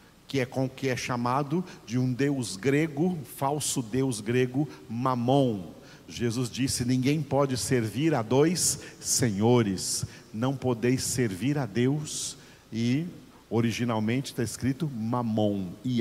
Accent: Brazilian